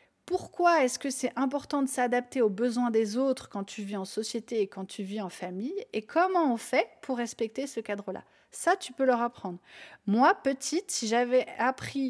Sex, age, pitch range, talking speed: female, 30-49, 210-265 Hz, 200 wpm